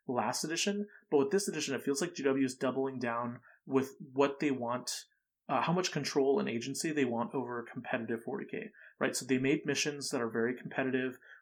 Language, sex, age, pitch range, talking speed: English, male, 30-49, 120-140 Hz, 200 wpm